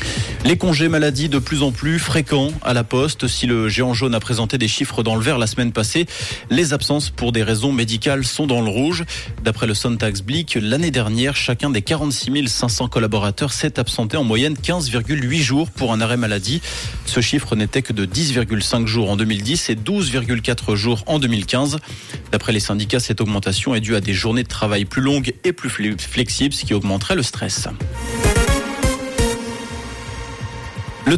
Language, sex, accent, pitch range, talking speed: French, male, French, 110-140 Hz, 180 wpm